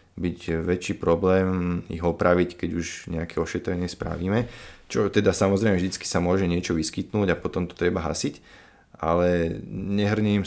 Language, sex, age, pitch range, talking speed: Slovak, male, 30-49, 80-90 Hz, 145 wpm